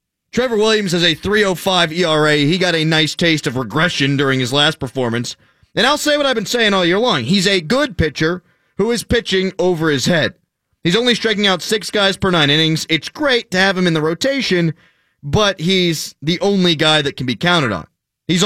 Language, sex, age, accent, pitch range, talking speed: English, male, 30-49, American, 150-205 Hz, 210 wpm